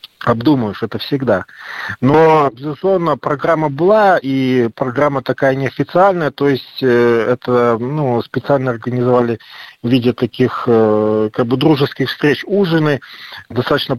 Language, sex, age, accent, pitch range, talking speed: Russian, male, 40-59, native, 120-145 Hz, 110 wpm